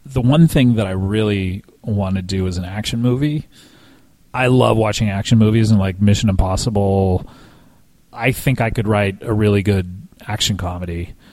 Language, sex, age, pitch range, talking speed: English, male, 30-49, 100-120 Hz, 170 wpm